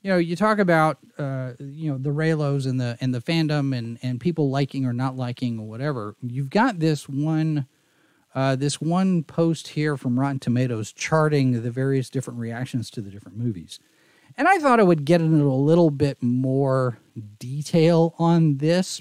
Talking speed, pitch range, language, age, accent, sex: 185 wpm, 130-170 Hz, English, 40-59, American, male